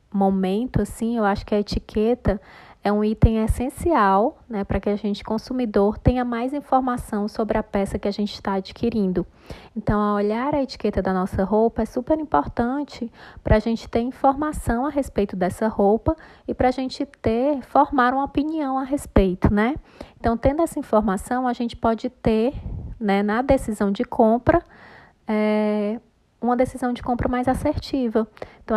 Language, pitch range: Portuguese, 200-250 Hz